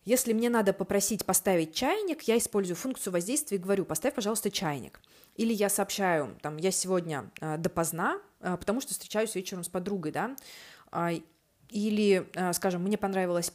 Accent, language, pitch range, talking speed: native, Russian, 180-220 Hz, 145 wpm